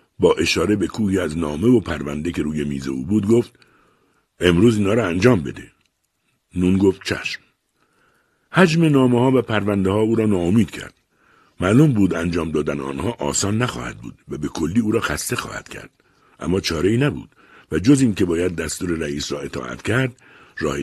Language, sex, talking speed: Persian, male, 180 wpm